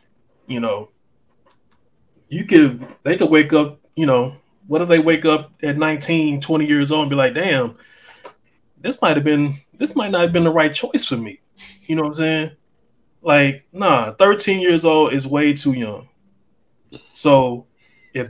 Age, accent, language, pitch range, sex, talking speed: 20-39, American, English, 140-170 Hz, male, 175 wpm